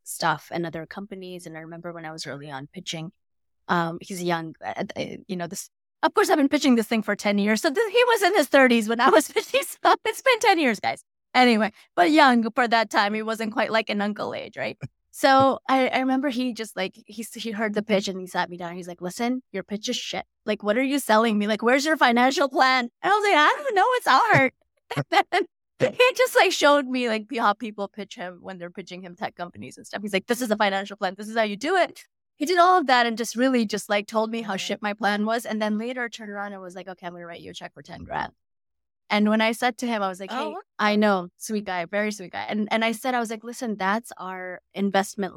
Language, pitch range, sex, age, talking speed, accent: English, 185-255 Hz, female, 20-39, 265 wpm, American